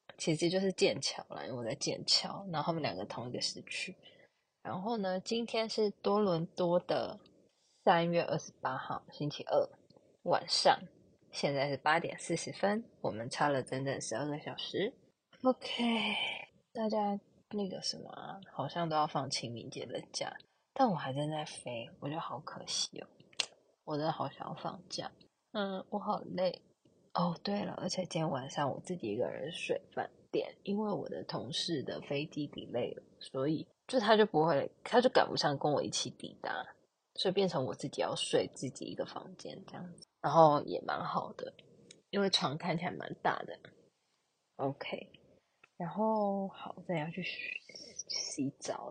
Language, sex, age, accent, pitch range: Chinese, female, 20-39, native, 150-205 Hz